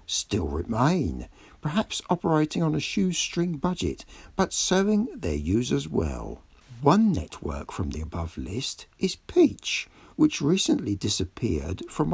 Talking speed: 125 wpm